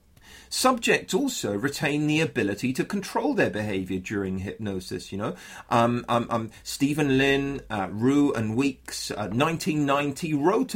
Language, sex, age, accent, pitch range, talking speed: English, male, 30-49, British, 125-185 Hz, 135 wpm